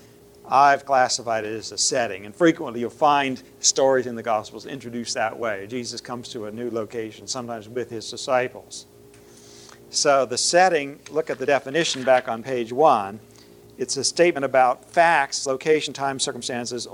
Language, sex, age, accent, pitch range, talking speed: English, male, 50-69, American, 110-140 Hz, 165 wpm